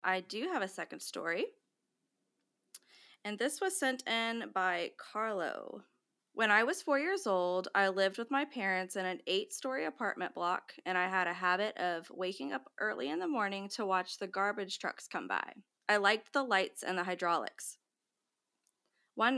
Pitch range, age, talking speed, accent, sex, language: 185-225 Hz, 20-39, 175 wpm, American, female, English